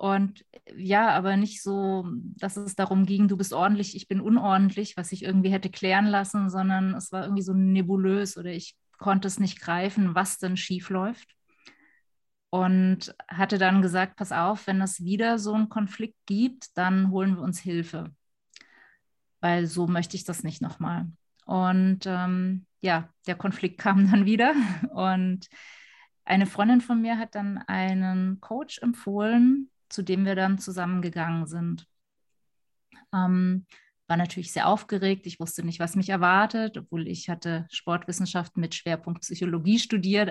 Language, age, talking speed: German, 20-39, 155 wpm